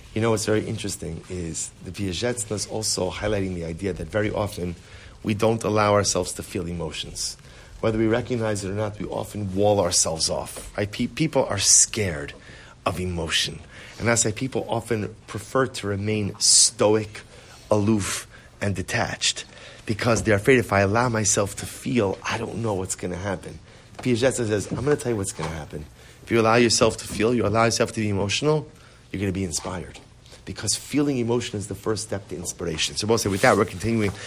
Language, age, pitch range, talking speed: English, 30-49, 100-125 Hz, 195 wpm